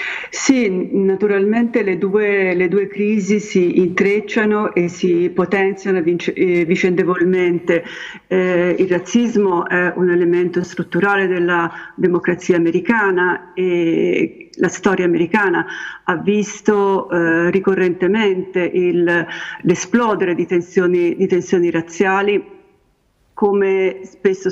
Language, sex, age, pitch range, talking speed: Italian, female, 50-69, 180-195 Hz, 90 wpm